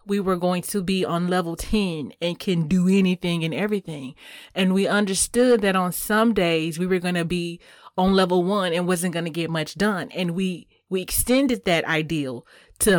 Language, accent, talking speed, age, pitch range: English, American, 190 wpm, 30-49, 175-220 Hz